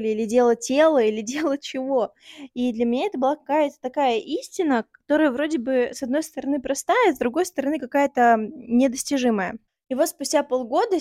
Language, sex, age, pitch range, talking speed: Russian, female, 20-39, 235-285 Hz, 165 wpm